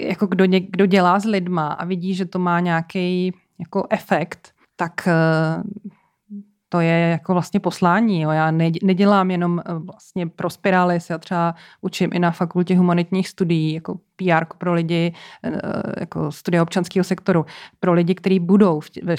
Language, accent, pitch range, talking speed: Czech, native, 165-190 Hz, 150 wpm